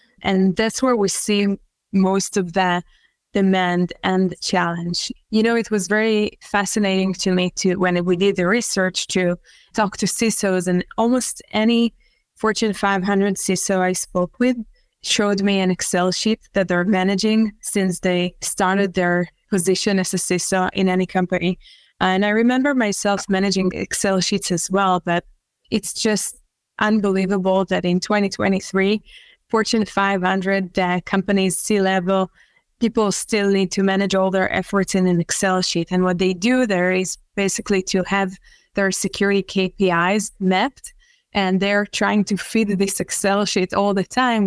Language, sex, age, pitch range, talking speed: English, female, 20-39, 185-210 Hz, 155 wpm